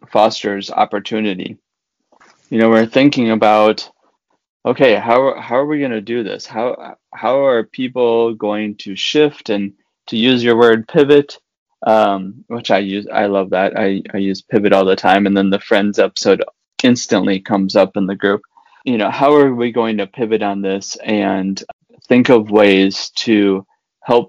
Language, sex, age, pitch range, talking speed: English, male, 20-39, 100-115 Hz, 175 wpm